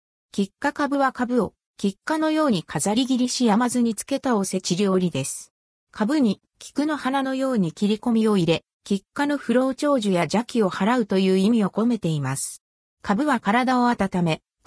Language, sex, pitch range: Japanese, female, 185-265 Hz